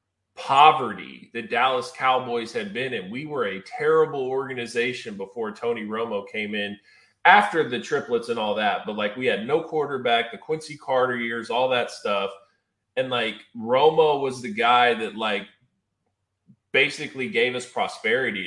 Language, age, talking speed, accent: English, 20-39, 155 wpm, American